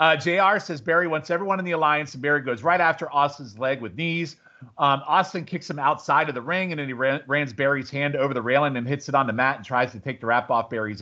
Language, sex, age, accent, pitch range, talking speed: English, male, 40-59, American, 125-155 Hz, 270 wpm